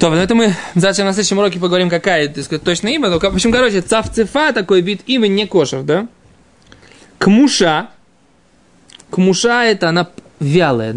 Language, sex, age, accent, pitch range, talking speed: Russian, male, 20-39, native, 165-215 Hz, 155 wpm